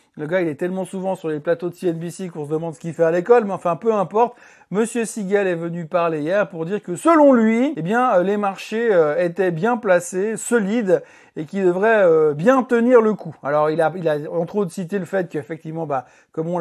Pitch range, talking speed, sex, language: 170-215 Hz, 230 wpm, male, French